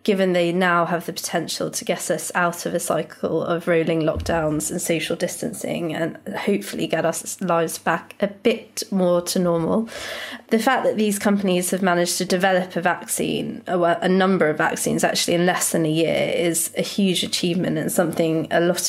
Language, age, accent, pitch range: English, 20-39, British, 165-190 Hz